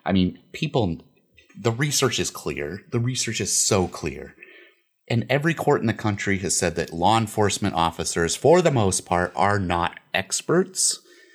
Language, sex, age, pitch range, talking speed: English, male, 30-49, 85-115 Hz, 165 wpm